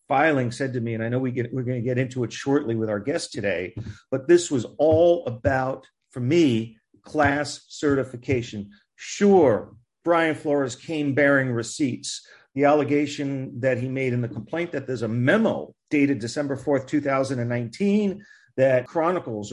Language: English